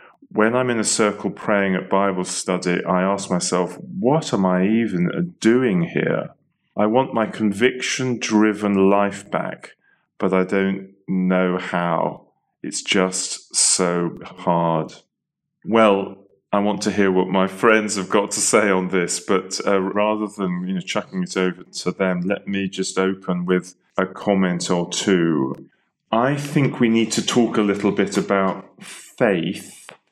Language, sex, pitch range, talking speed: English, male, 95-110 Hz, 155 wpm